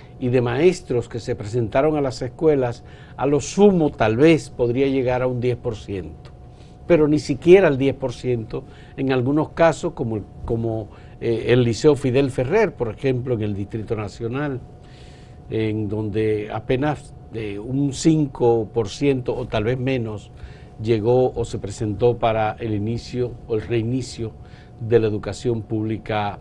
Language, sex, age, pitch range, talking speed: Spanish, male, 50-69, 115-150 Hz, 145 wpm